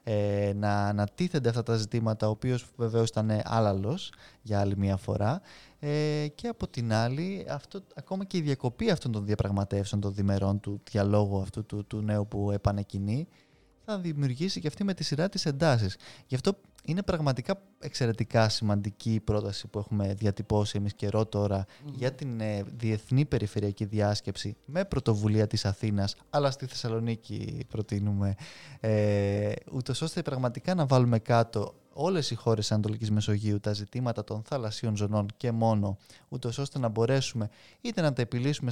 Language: Greek